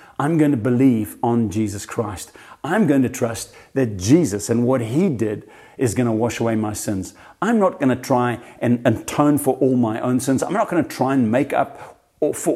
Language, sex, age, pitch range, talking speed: English, male, 50-69, 105-130 Hz, 220 wpm